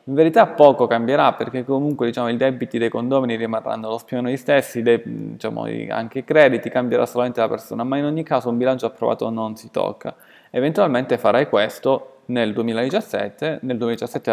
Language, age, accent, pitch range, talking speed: Italian, 20-39, native, 110-135 Hz, 175 wpm